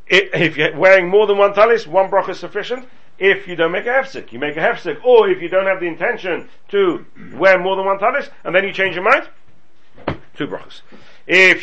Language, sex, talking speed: English, male, 220 wpm